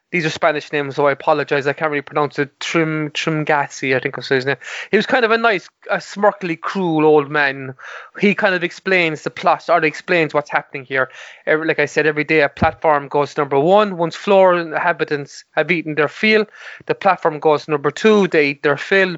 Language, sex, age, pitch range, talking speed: English, male, 20-39, 150-195 Hz, 215 wpm